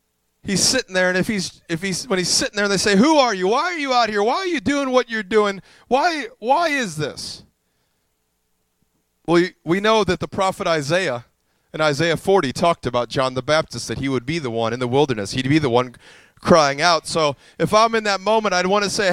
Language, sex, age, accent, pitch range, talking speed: English, male, 30-49, American, 155-205 Hz, 230 wpm